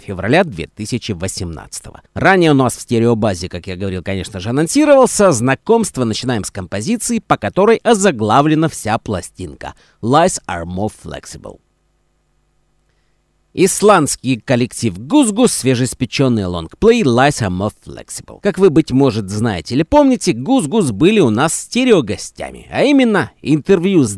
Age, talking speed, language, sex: 50-69, 125 wpm, Russian, male